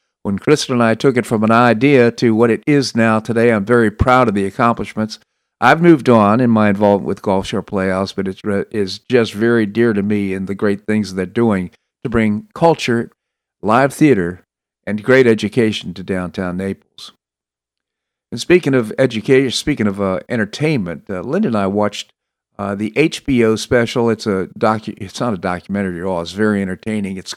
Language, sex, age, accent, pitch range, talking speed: English, male, 50-69, American, 100-125 Hz, 195 wpm